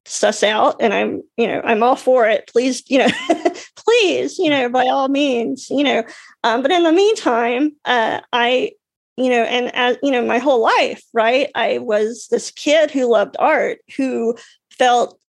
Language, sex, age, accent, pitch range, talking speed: English, female, 40-59, American, 230-295 Hz, 185 wpm